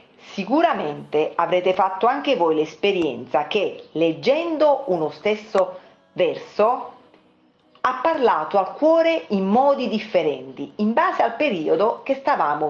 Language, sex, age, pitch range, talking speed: Italian, female, 40-59, 165-265 Hz, 115 wpm